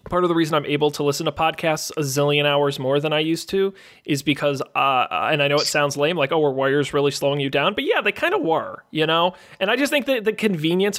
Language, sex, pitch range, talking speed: English, male, 140-165 Hz, 275 wpm